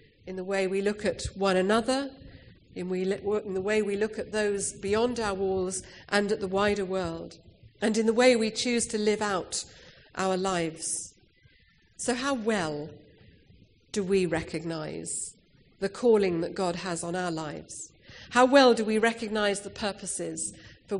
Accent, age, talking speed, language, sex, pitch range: British, 50-69, 165 wpm, English, female, 175-220 Hz